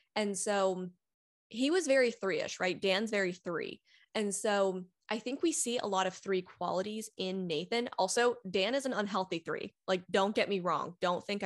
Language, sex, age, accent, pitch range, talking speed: English, female, 10-29, American, 185-240 Hz, 190 wpm